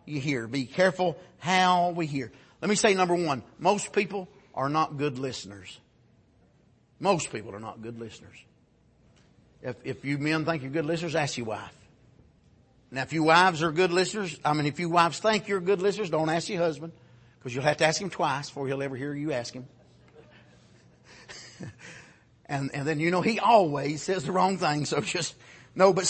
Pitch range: 140-210 Hz